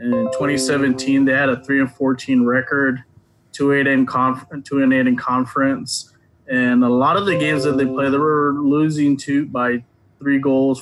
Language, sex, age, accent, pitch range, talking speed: English, male, 20-39, American, 130-145 Hz, 190 wpm